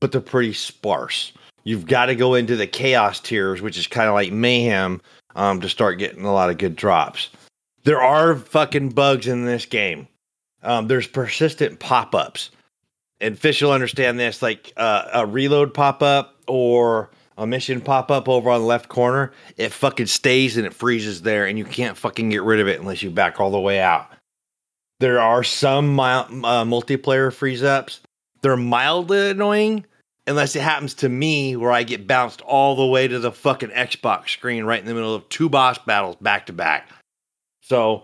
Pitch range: 115-135 Hz